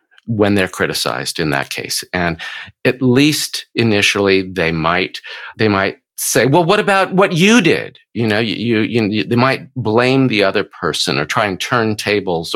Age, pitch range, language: 50-69, 90-120 Hz, English